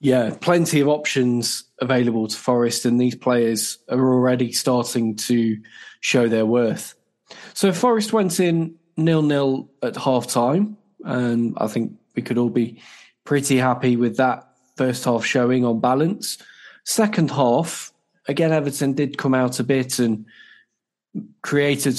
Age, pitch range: 10-29, 125-160 Hz